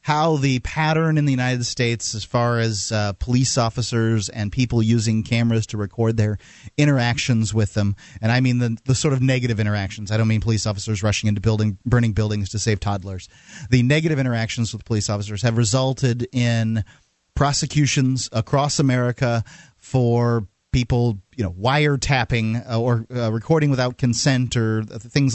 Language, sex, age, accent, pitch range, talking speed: English, male, 30-49, American, 110-135 Hz, 165 wpm